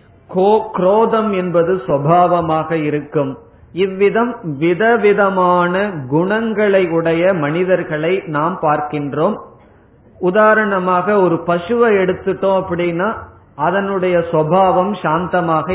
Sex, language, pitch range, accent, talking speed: male, Tamil, 155-195 Hz, native, 70 wpm